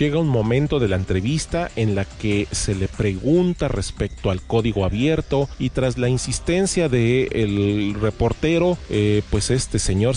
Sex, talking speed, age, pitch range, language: male, 155 wpm, 40-59, 100-140 Hz, English